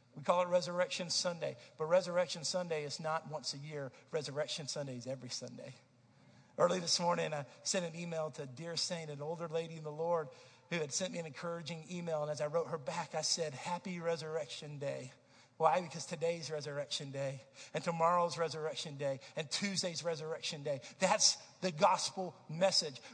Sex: male